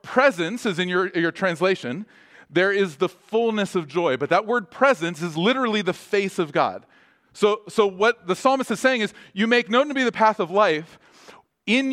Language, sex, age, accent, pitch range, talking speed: English, male, 40-59, American, 145-205 Hz, 200 wpm